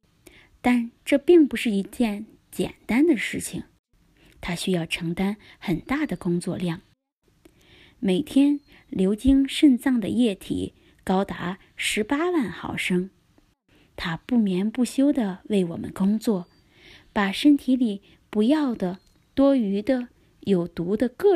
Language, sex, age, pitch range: Chinese, female, 20-39, 180-265 Hz